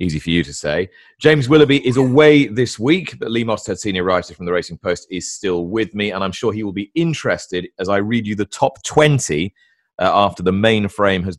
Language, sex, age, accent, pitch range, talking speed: English, male, 30-49, British, 90-125 Hz, 225 wpm